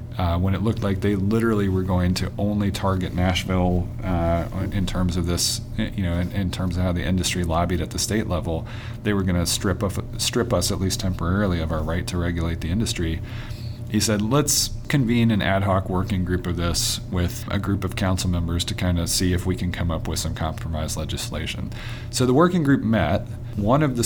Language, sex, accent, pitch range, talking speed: English, male, American, 90-110 Hz, 220 wpm